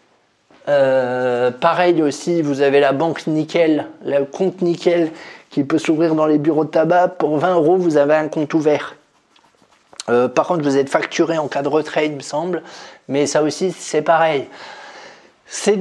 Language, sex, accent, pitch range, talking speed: French, male, French, 150-180 Hz, 175 wpm